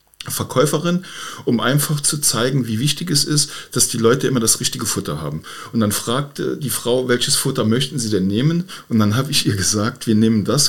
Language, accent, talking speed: German, German, 210 wpm